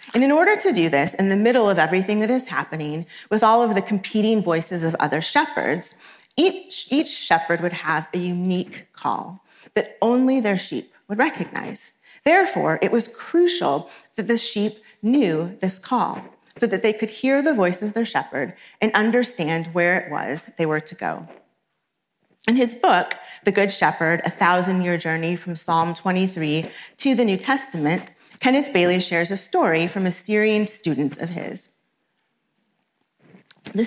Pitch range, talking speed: 170-245 Hz, 165 wpm